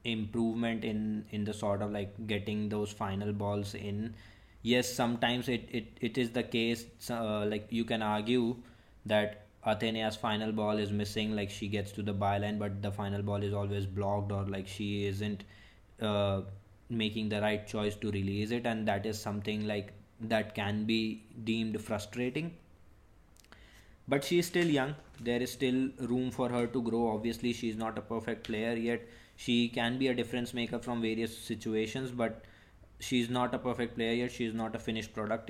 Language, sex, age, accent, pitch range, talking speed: English, male, 20-39, Indian, 105-115 Hz, 185 wpm